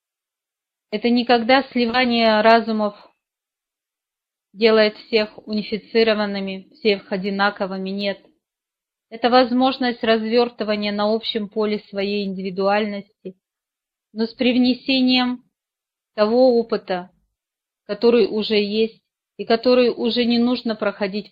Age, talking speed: 30-49, 90 wpm